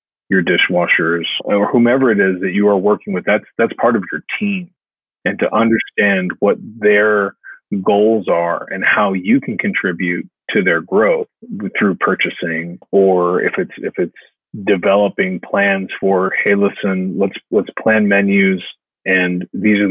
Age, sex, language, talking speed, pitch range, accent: 30-49, male, English, 155 wpm, 95-110 Hz, American